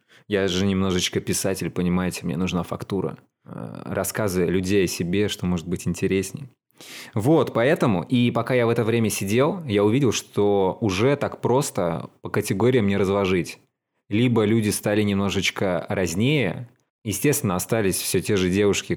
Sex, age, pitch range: male, 20-39, 90-110 Hz